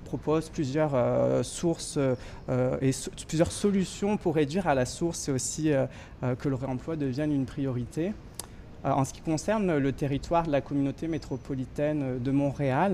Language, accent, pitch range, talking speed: French, French, 130-155 Hz, 175 wpm